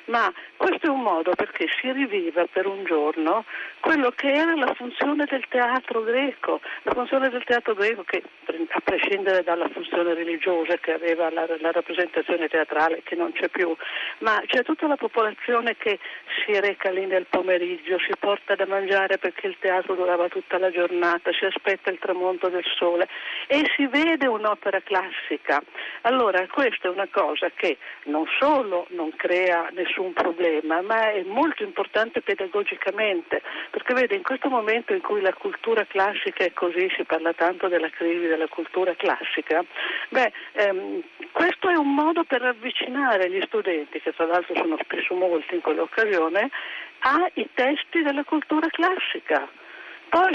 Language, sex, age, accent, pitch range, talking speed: Italian, female, 50-69, native, 180-275 Hz, 160 wpm